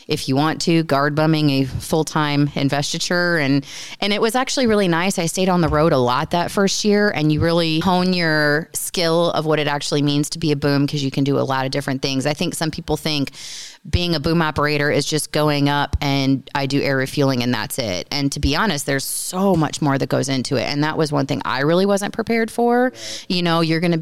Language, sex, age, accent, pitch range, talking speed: English, female, 30-49, American, 145-175 Hz, 240 wpm